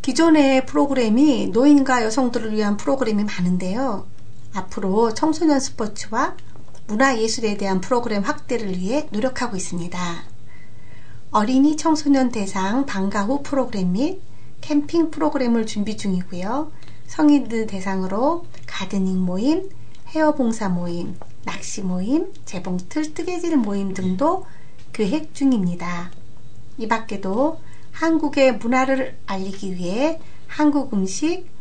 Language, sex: Korean, female